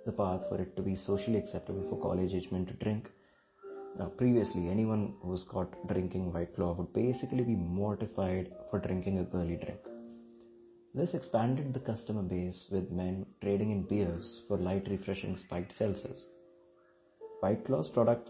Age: 30-49